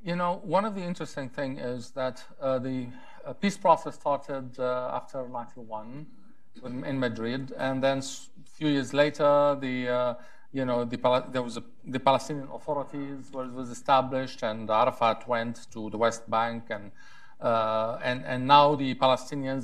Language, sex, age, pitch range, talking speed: English, male, 50-69, 125-175 Hz, 160 wpm